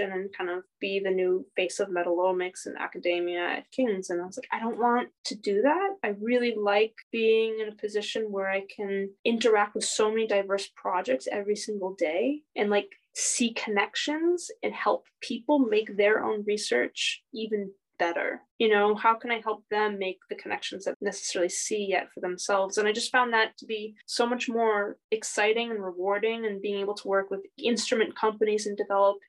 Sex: female